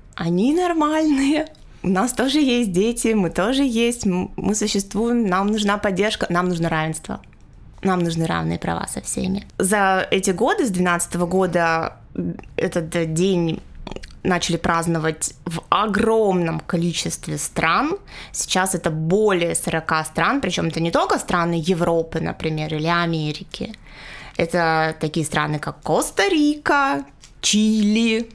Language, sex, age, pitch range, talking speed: Russian, female, 20-39, 165-210 Hz, 125 wpm